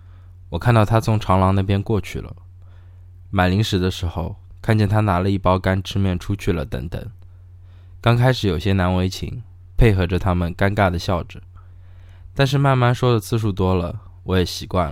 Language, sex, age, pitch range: Chinese, male, 20-39, 90-105 Hz